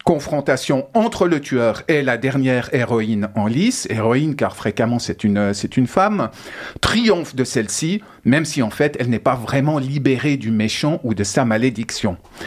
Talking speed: 170 wpm